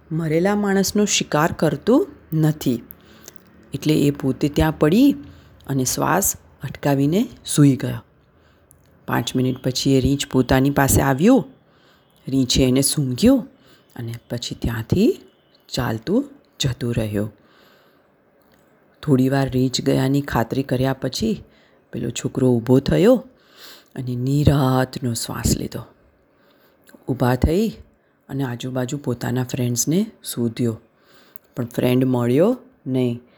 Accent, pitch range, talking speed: native, 125-175 Hz, 100 wpm